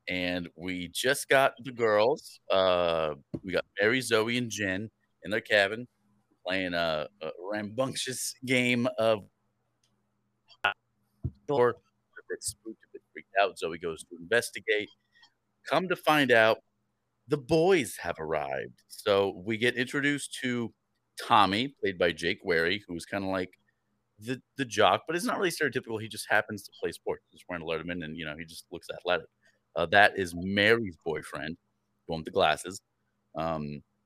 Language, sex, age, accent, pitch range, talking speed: English, male, 30-49, American, 90-120 Hz, 160 wpm